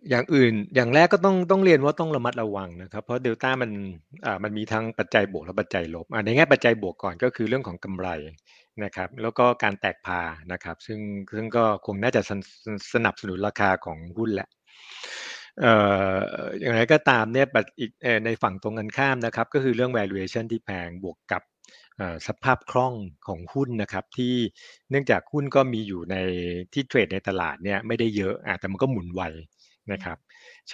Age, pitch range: 60-79, 95-125 Hz